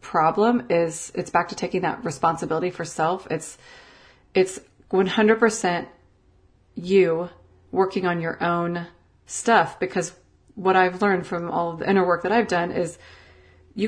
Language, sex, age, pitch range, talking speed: English, female, 30-49, 165-205 Hz, 145 wpm